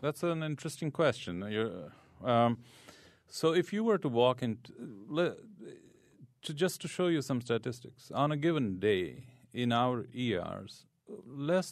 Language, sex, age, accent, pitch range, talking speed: English, male, 40-59, Indian, 100-125 Hz, 150 wpm